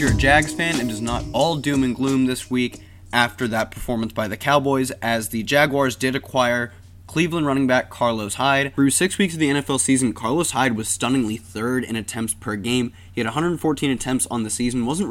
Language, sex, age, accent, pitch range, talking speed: English, male, 20-39, American, 110-135 Hz, 210 wpm